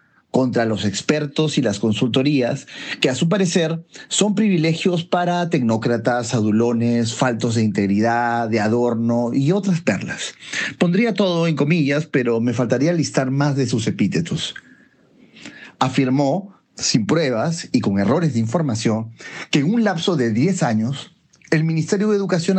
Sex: male